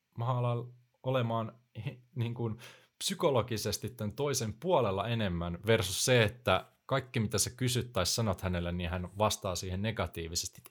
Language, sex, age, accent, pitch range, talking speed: Finnish, male, 30-49, native, 95-125 Hz, 135 wpm